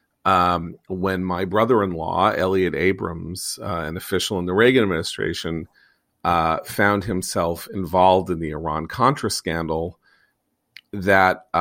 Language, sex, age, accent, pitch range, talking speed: English, male, 40-59, American, 90-110 Hz, 115 wpm